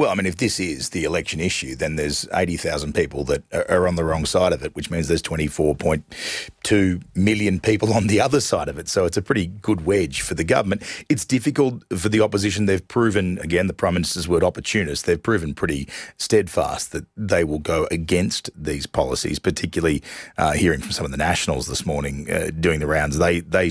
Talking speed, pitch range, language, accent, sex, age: 210 wpm, 85-105 Hz, English, Australian, male, 40-59